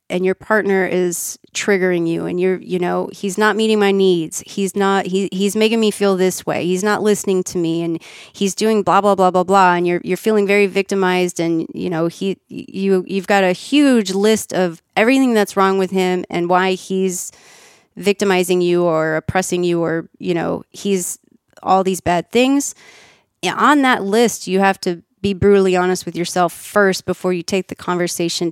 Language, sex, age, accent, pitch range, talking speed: English, female, 30-49, American, 180-210 Hz, 195 wpm